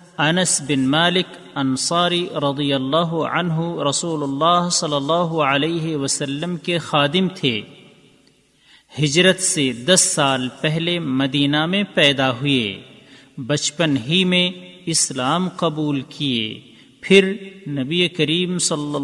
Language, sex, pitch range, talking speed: Urdu, male, 135-175 Hz, 110 wpm